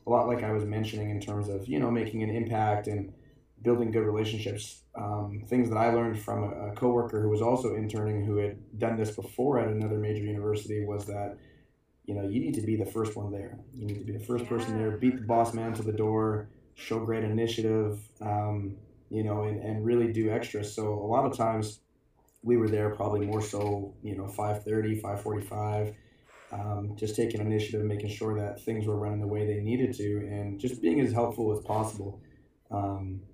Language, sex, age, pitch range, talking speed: English, male, 20-39, 105-115 Hz, 210 wpm